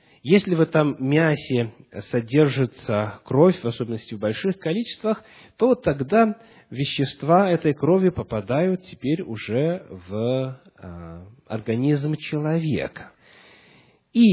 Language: Russian